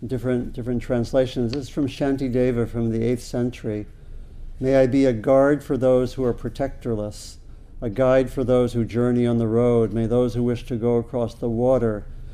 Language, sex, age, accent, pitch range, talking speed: English, male, 60-79, American, 105-125 Hz, 190 wpm